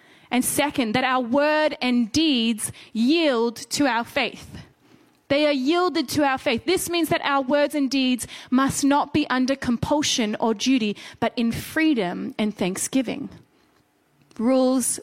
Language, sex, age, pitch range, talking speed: English, female, 20-39, 230-285 Hz, 150 wpm